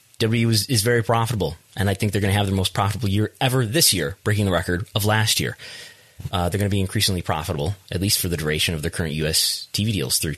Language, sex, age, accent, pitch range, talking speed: English, male, 30-49, American, 80-110 Hz, 255 wpm